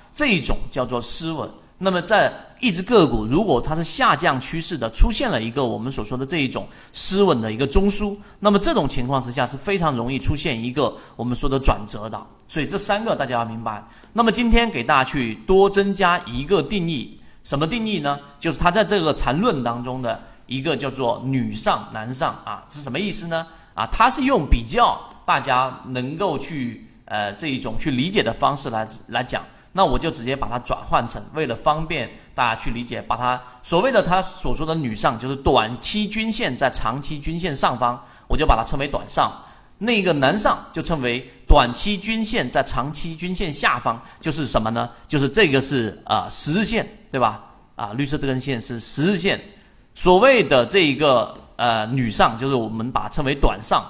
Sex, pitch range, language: male, 120-180 Hz, Chinese